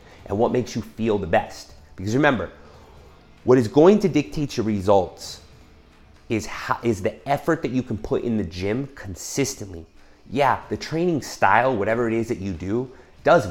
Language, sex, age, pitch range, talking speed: English, male, 30-49, 95-125 Hz, 175 wpm